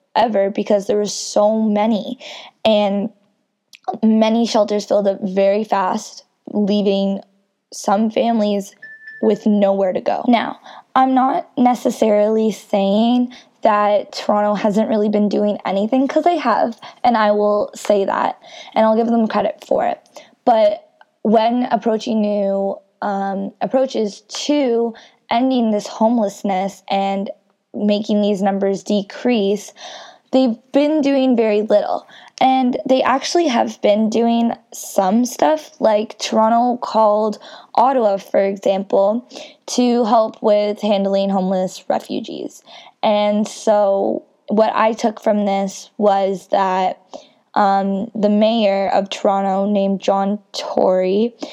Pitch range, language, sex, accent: 200-245 Hz, English, female, American